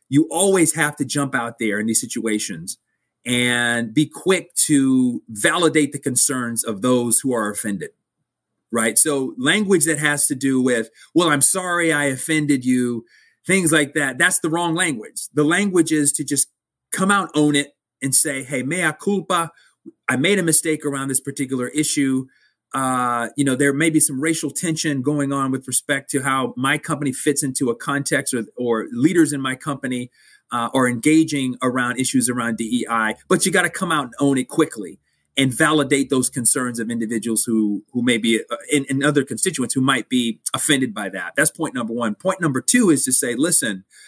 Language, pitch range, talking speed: English, 125-160 Hz, 190 wpm